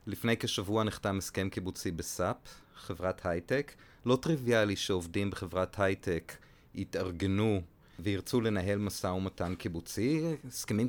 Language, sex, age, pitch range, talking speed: English, male, 40-59, 100-125 Hz, 110 wpm